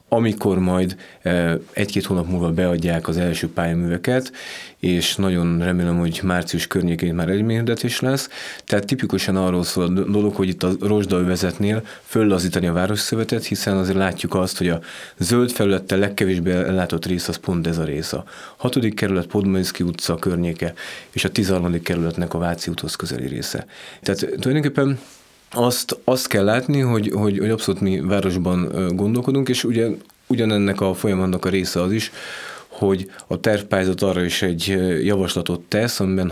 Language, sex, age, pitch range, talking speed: Hungarian, male, 30-49, 90-105 Hz, 155 wpm